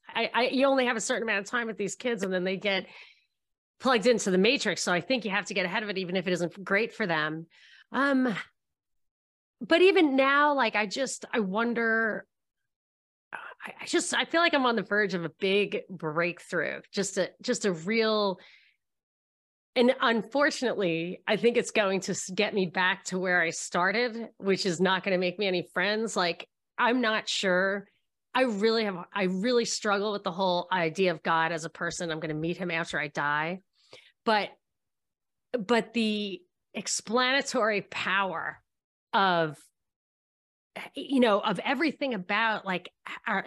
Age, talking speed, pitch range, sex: 30-49, 175 wpm, 185-235 Hz, female